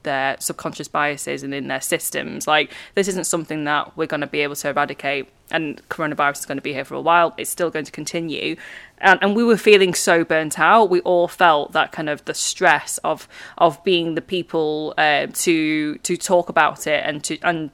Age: 20-39